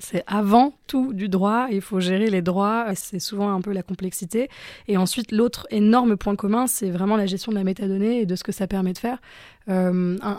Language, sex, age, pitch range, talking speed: French, female, 20-39, 195-225 Hz, 225 wpm